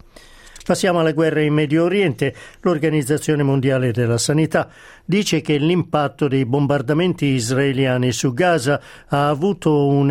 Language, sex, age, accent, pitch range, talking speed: Italian, male, 50-69, native, 135-165 Hz, 125 wpm